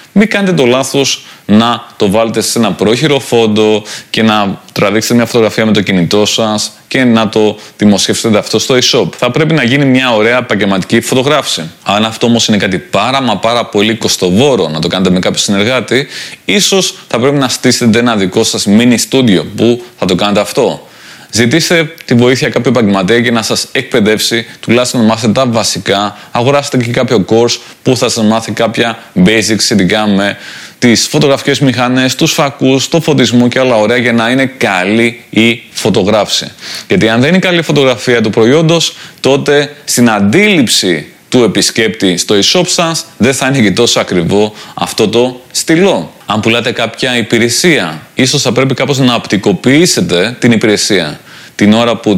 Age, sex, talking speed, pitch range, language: 20-39, male, 170 wpm, 105-130 Hz, Greek